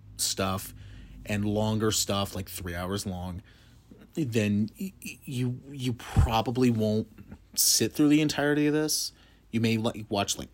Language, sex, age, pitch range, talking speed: English, male, 30-49, 95-115 Hz, 130 wpm